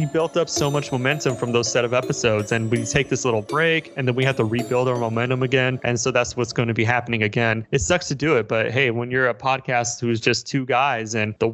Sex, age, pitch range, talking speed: male, 30-49, 115-140 Hz, 270 wpm